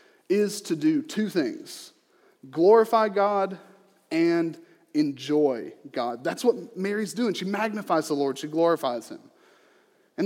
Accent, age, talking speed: American, 30-49, 130 wpm